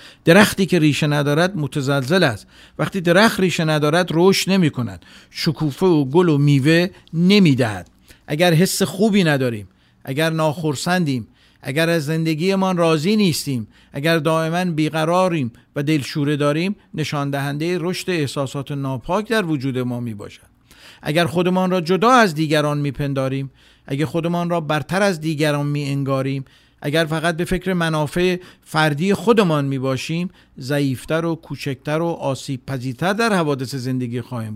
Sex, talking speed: male, 135 wpm